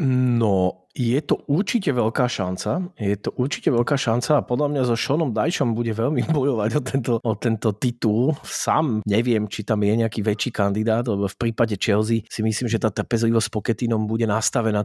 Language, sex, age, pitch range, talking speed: Slovak, male, 30-49, 105-125 Hz, 180 wpm